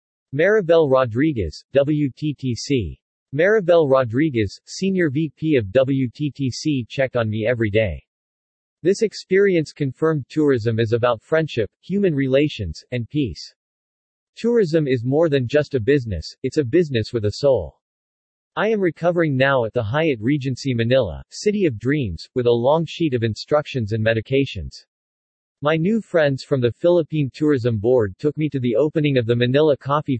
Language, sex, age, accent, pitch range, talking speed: English, male, 40-59, American, 120-155 Hz, 150 wpm